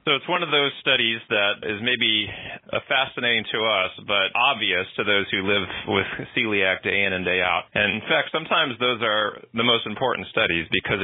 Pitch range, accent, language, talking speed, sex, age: 95-110 Hz, American, English, 195 wpm, male, 30-49